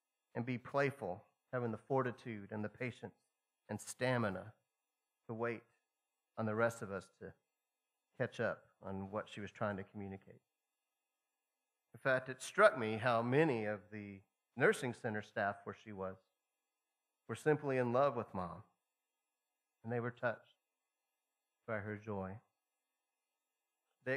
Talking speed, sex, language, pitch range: 140 wpm, male, English, 110-130 Hz